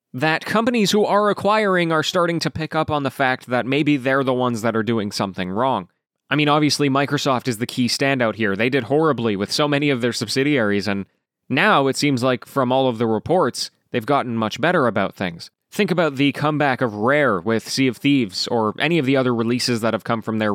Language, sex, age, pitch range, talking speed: English, male, 20-39, 125-175 Hz, 230 wpm